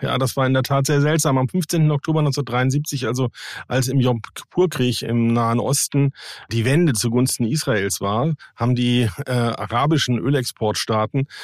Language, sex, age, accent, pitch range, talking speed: German, male, 40-59, German, 115-140 Hz, 150 wpm